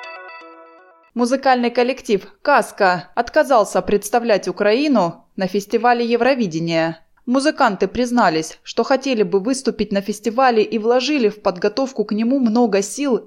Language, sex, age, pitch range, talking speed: Russian, female, 20-39, 185-245 Hz, 115 wpm